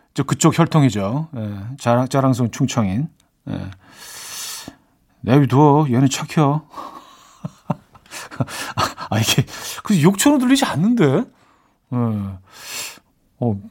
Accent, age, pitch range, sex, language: native, 40-59, 125-190 Hz, male, Korean